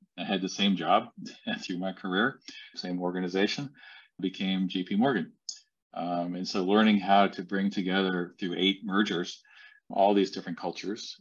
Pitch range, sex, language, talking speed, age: 90-115 Hz, male, English, 150 wpm, 40-59